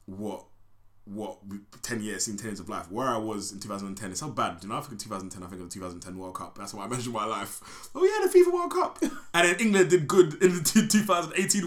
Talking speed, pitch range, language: 275 wpm, 95-120 Hz, English